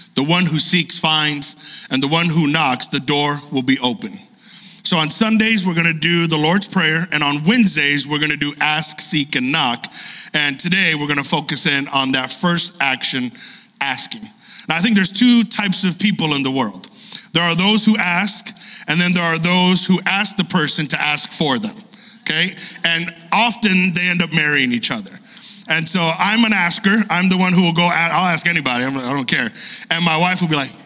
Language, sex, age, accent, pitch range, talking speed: English, male, 40-59, American, 165-220 Hz, 215 wpm